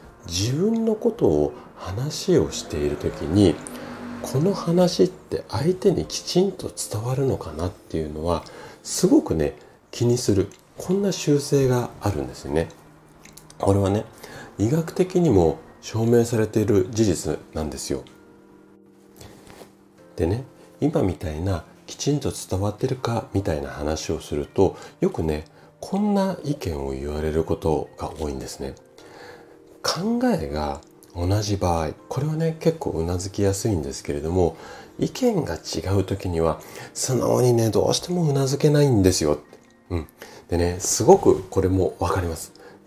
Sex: male